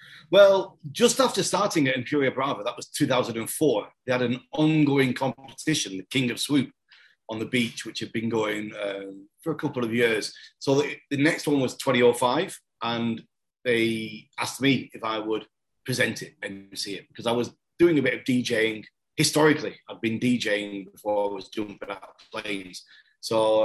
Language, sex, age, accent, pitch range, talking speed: English, male, 30-49, British, 115-150 Hz, 180 wpm